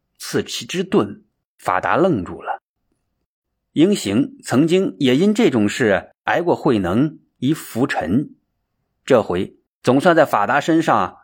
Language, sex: Chinese, male